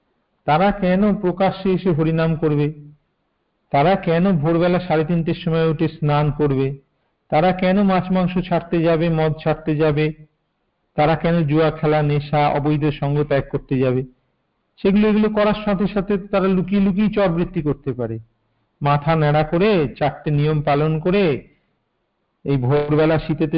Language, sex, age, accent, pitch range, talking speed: Hindi, male, 50-69, native, 140-175 Hz, 35 wpm